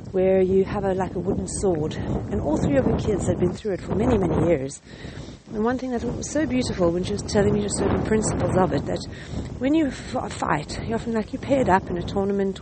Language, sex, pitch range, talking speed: English, female, 190-245 Hz, 250 wpm